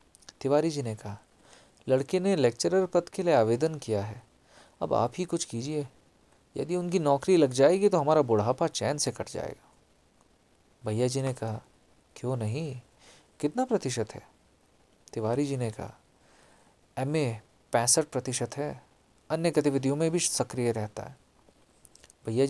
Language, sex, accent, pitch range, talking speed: English, male, Indian, 110-150 Hz, 140 wpm